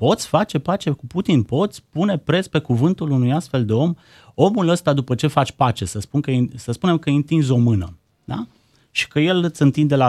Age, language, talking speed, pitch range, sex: 30-49, Romanian, 220 wpm, 115-150 Hz, male